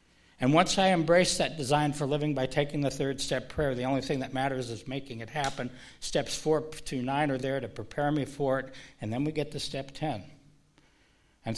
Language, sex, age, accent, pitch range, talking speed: English, male, 60-79, American, 125-145 Hz, 220 wpm